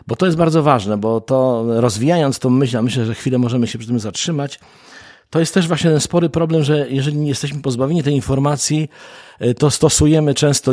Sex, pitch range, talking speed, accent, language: male, 115-140 Hz, 195 wpm, native, Polish